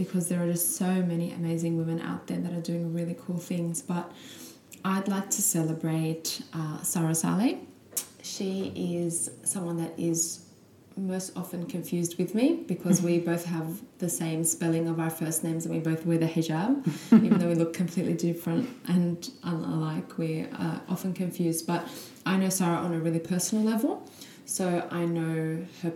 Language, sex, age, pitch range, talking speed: English, female, 20-39, 160-180 Hz, 175 wpm